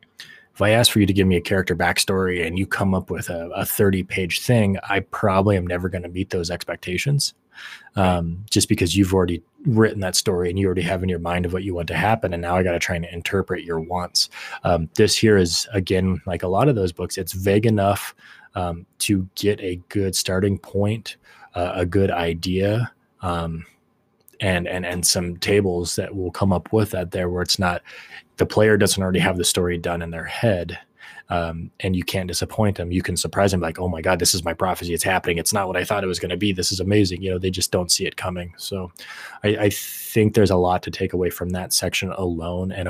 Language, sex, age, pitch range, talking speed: English, male, 20-39, 90-100 Hz, 235 wpm